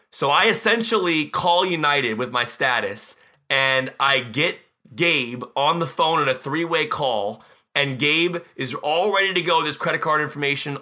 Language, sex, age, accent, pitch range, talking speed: English, male, 30-49, American, 130-170 Hz, 165 wpm